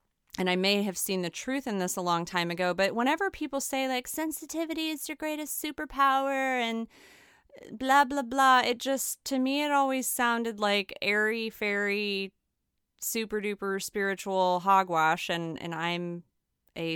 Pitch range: 175-255 Hz